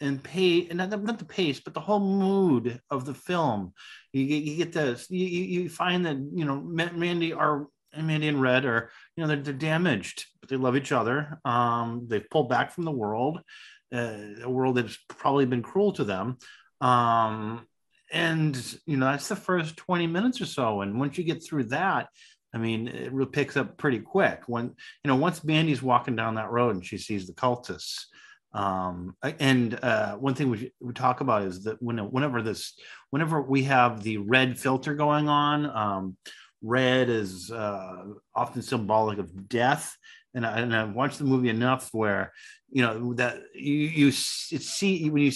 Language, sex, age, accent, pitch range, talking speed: English, male, 30-49, American, 110-150 Hz, 190 wpm